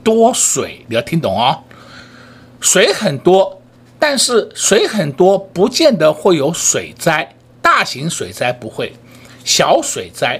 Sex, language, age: male, Chinese, 60-79